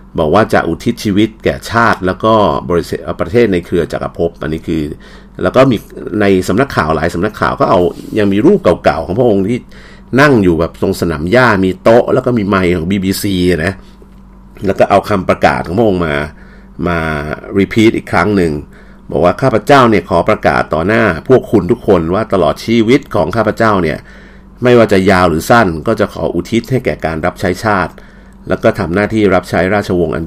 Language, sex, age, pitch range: Thai, male, 50-69, 85-115 Hz